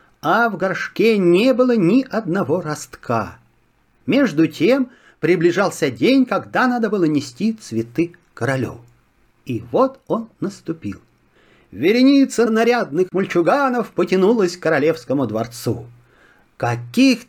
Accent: native